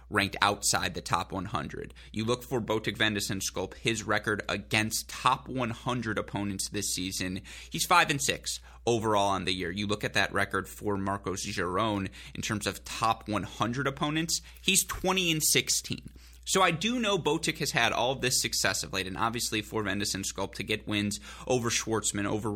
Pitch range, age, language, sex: 100-125 Hz, 20-39, English, male